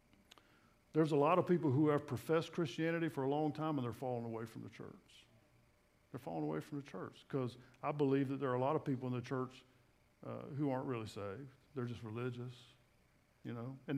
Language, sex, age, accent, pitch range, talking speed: English, male, 50-69, American, 130-160 Hz, 215 wpm